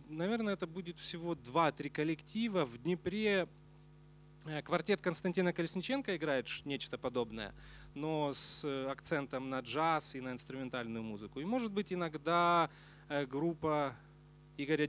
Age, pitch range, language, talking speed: 20-39, 145-185 Hz, Russian, 115 wpm